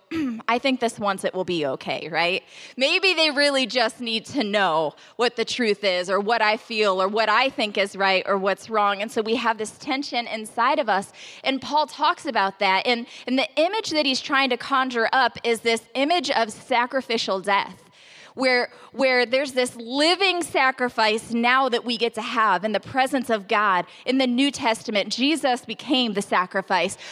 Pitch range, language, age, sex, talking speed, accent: 225-285 Hz, English, 20-39, female, 195 wpm, American